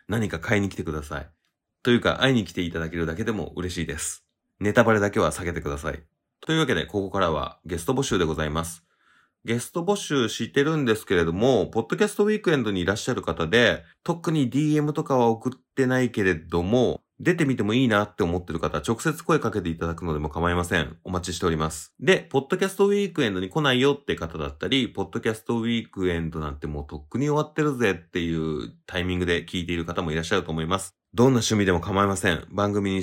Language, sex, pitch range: Japanese, male, 85-125 Hz